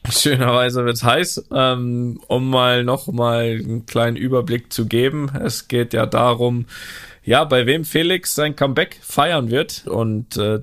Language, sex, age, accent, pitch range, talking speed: German, male, 20-39, German, 115-135 Hz, 160 wpm